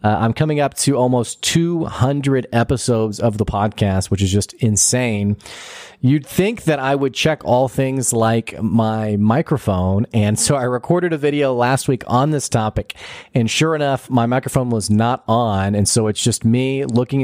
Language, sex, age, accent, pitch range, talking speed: English, male, 30-49, American, 105-130 Hz, 175 wpm